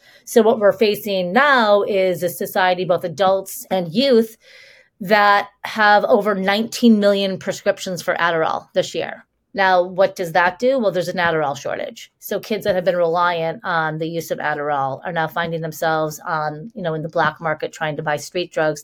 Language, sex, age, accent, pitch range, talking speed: English, female, 30-49, American, 170-210 Hz, 190 wpm